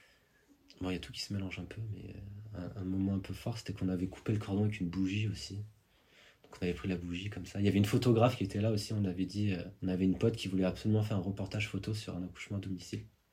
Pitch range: 90-105 Hz